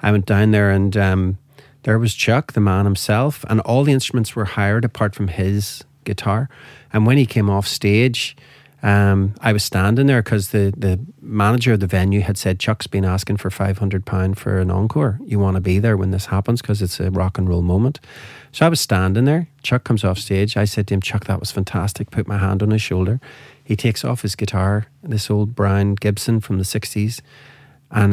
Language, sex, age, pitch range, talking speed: English, male, 30-49, 100-120 Hz, 220 wpm